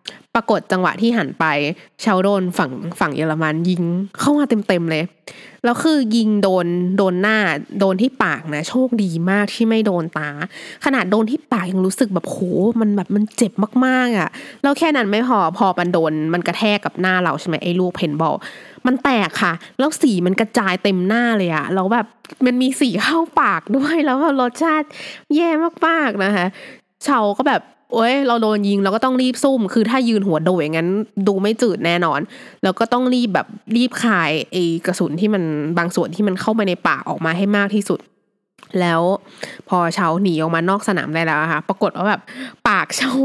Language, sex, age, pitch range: Thai, female, 20-39, 180-250 Hz